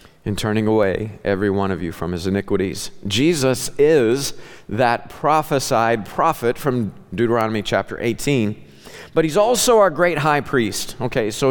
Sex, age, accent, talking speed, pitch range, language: male, 50-69, American, 145 wpm, 115-145 Hz, English